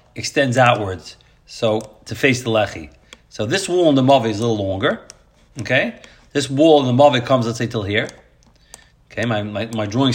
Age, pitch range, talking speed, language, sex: 40-59, 115-150 Hz, 195 wpm, English, male